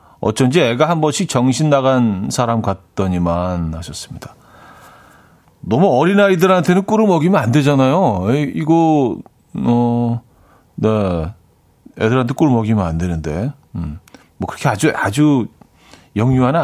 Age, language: 40-59, Korean